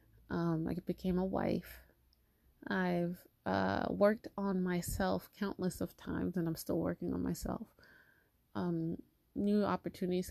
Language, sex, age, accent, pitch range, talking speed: English, female, 20-39, American, 160-200 Hz, 130 wpm